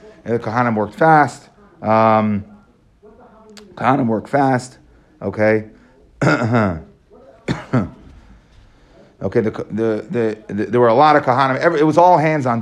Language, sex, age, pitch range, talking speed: English, male, 30-49, 110-145 Hz, 115 wpm